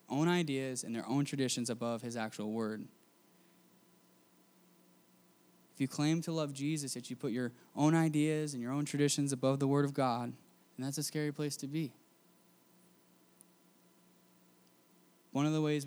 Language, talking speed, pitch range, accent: English, 160 wpm, 125-145 Hz, American